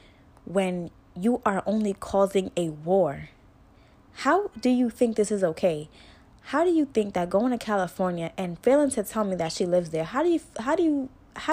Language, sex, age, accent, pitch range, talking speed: English, female, 10-29, American, 160-220 Hz, 180 wpm